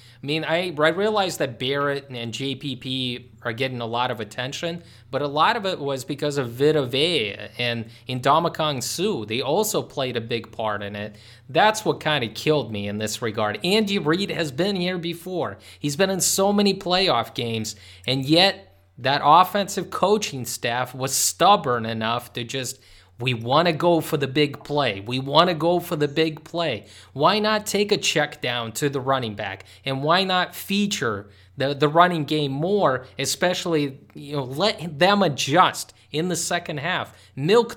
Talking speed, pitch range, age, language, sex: 185 wpm, 120-170 Hz, 30-49, English, male